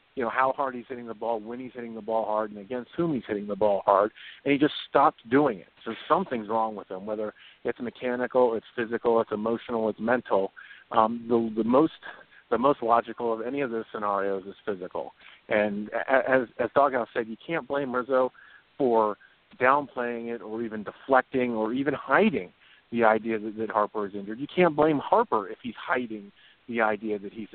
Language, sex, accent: English, male, American